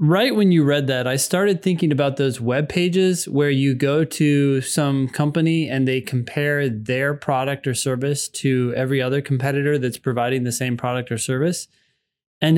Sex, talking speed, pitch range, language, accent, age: male, 175 wpm, 130-155 Hz, English, American, 20-39